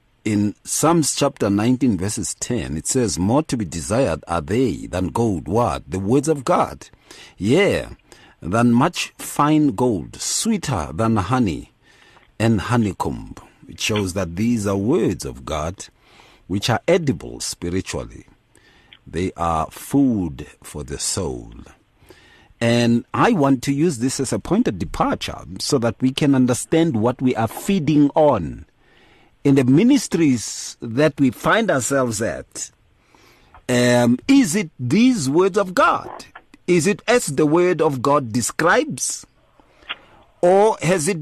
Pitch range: 115-175 Hz